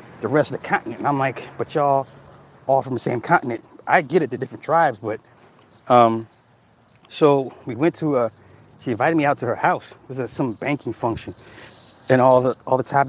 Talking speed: 210 wpm